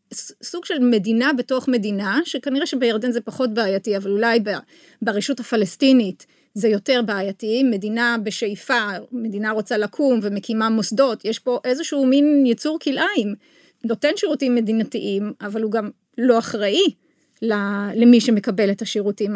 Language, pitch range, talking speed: Hebrew, 215-275 Hz, 130 wpm